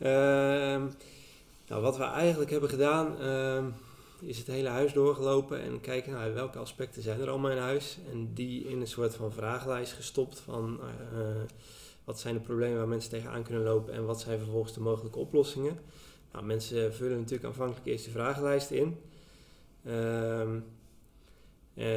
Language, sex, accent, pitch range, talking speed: Dutch, male, Dutch, 110-130 Hz, 155 wpm